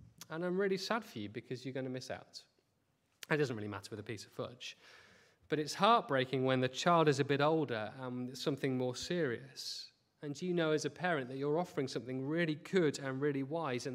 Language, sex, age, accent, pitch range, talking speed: English, male, 30-49, British, 130-190 Hz, 225 wpm